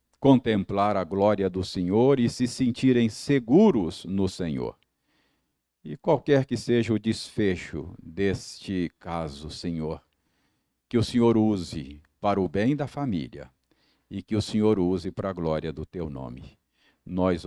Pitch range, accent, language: 95-135 Hz, Brazilian, Portuguese